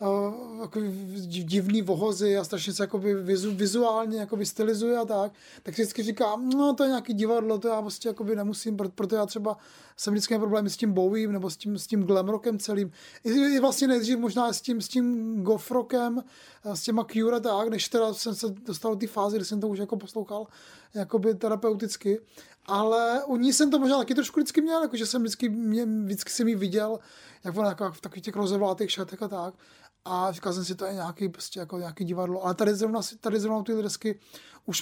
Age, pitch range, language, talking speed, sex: 20-39, 200-225 Hz, Czech, 205 wpm, male